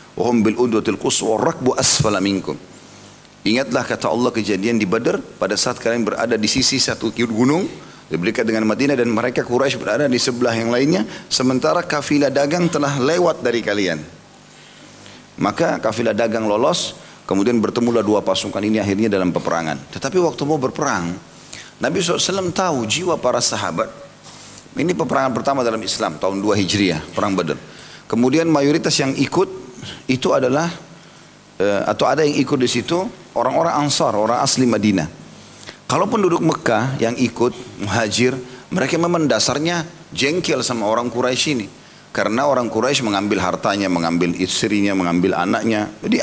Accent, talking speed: native, 145 wpm